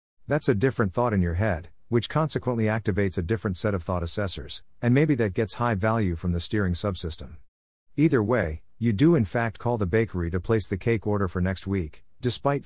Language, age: English, 50-69